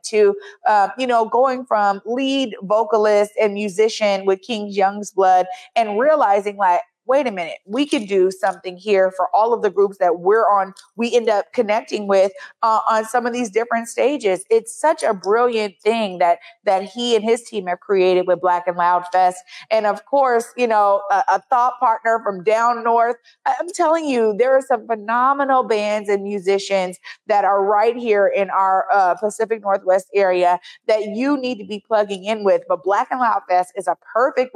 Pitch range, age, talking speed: 195-245 Hz, 30-49, 195 wpm